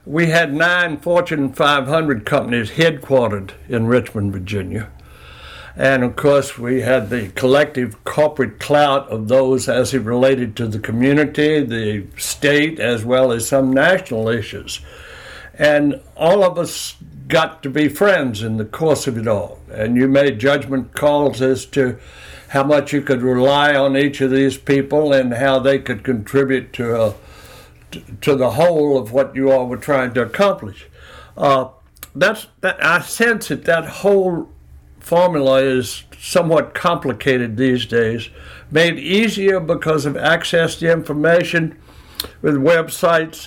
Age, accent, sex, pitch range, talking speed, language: 60-79, American, male, 120-155 Hz, 150 wpm, English